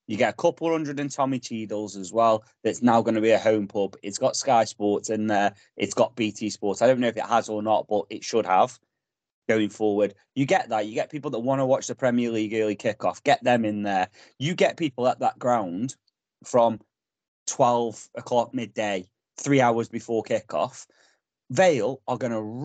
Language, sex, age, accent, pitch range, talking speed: English, male, 20-39, British, 110-145 Hz, 210 wpm